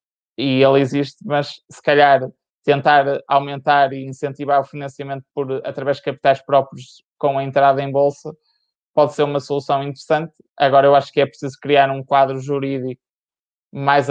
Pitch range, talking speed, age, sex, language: 140-155 Hz, 160 wpm, 20-39, male, Portuguese